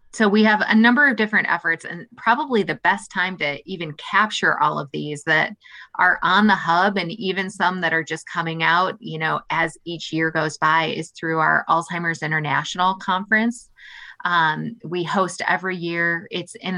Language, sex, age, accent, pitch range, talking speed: English, female, 20-39, American, 160-190 Hz, 185 wpm